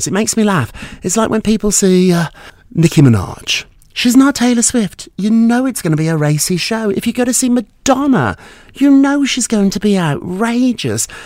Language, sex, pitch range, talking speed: English, male, 115-185 Hz, 205 wpm